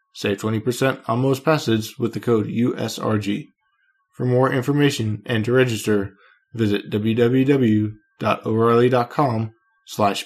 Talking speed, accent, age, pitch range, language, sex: 105 wpm, American, 20-39, 110-140 Hz, English, male